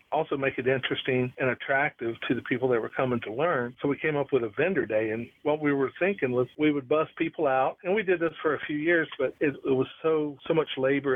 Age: 50-69